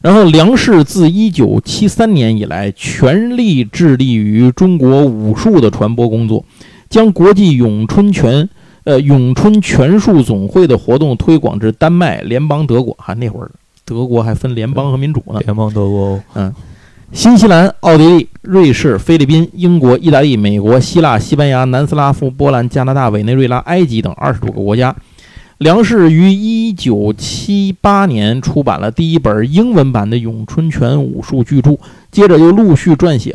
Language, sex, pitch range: Chinese, male, 115-175 Hz